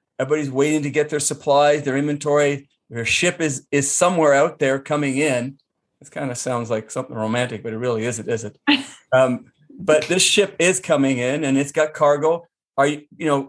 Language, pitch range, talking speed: English, 130-155 Hz, 200 wpm